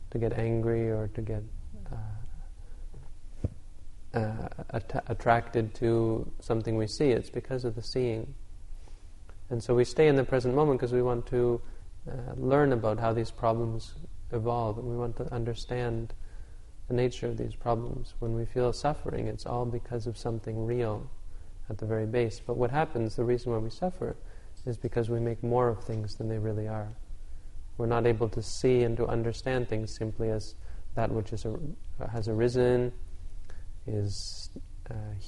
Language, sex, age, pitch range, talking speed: English, male, 30-49, 105-120 Hz, 170 wpm